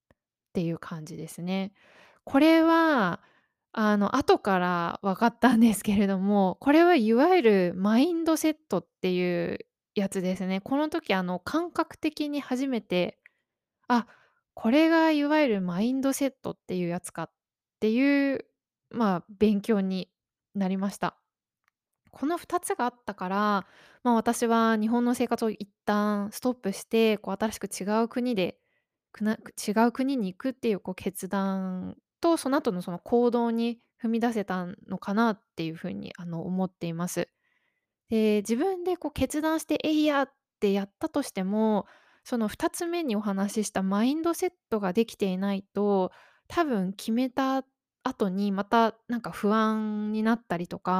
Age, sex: 20-39, female